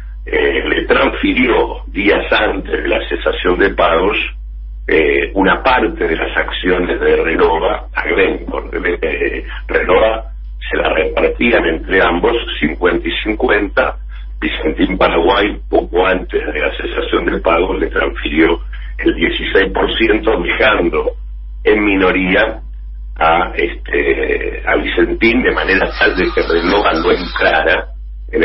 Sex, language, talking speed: male, Spanish, 130 wpm